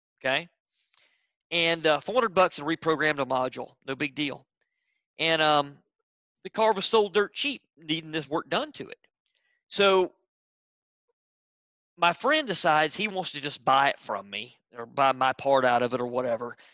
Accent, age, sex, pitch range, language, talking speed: American, 40-59, male, 150-245 Hz, English, 170 wpm